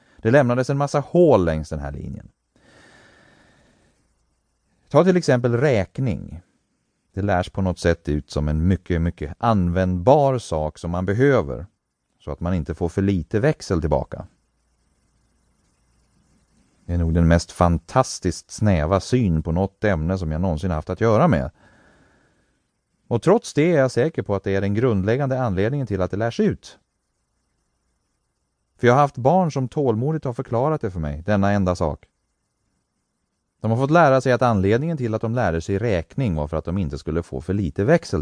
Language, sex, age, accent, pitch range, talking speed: English, male, 30-49, Swedish, 85-125 Hz, 175 wpm